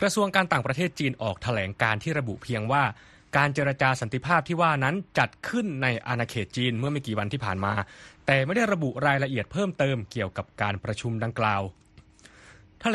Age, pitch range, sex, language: 20-39, 115-170 Hz, male, Thai